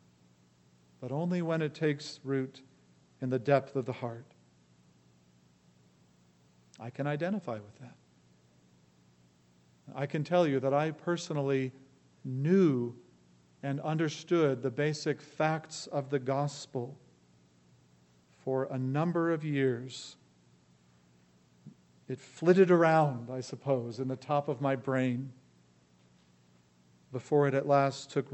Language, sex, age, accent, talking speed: English, male, 50-69, American, 115 wpm